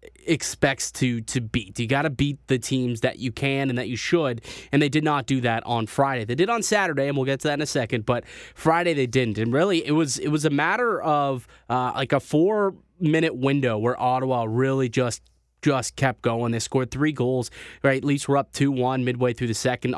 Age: 20-39